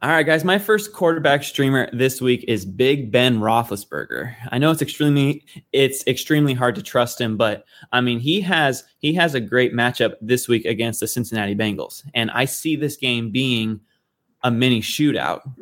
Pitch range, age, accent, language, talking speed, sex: 115-145 Hz, 20-39, American, English, 185 wpm, male